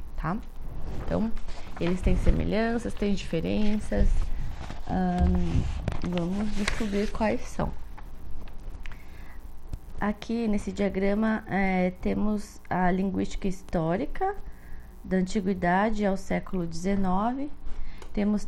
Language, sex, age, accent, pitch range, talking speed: Portuguese, female, 20-39, Brazilian, 175-205 Hz, 75 wpm